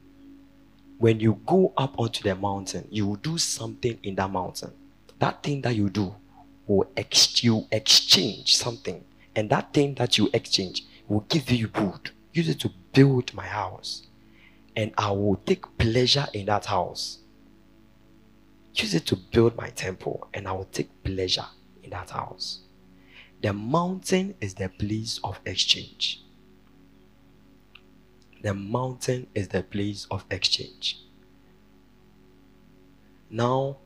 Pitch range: 100-130 Hz